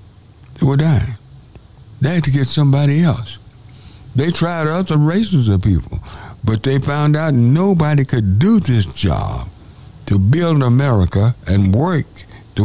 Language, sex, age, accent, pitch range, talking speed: English, male, 60-79, American, 100-130 Hz, 140 wpm